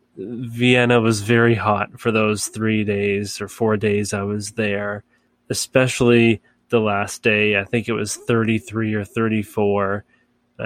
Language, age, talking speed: English, 20-39, 140 wpm